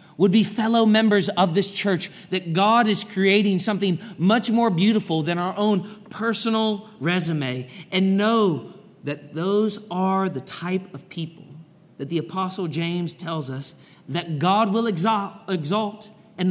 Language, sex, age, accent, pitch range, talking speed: English, male, 30-49, American, 130-190 Hz, 150 wpm